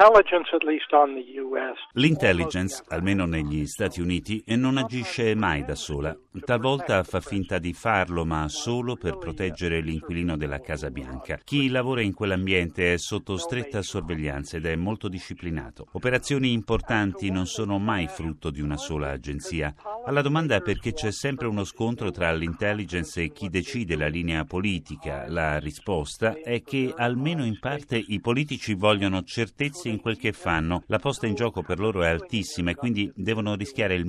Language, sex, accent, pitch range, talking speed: Italian, male, native, 85-120 Hz, 155 wpm